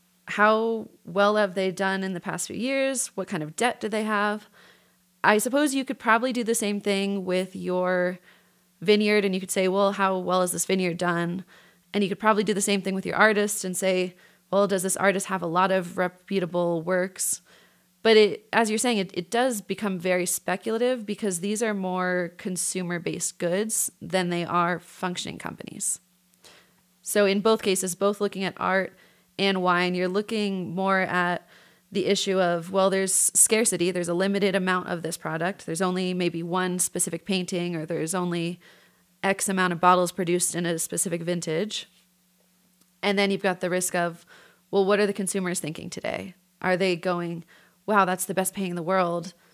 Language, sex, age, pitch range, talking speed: English, female, 30-49, 180-200 Hz, 185 wpm